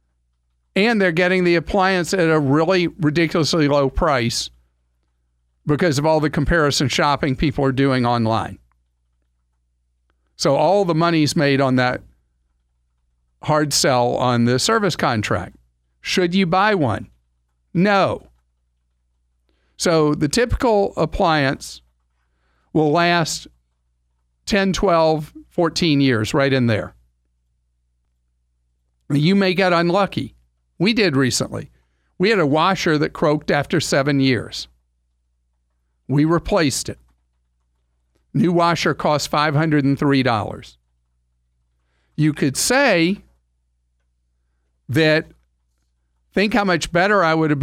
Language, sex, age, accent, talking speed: English, male, 50-69, American, 110 wpm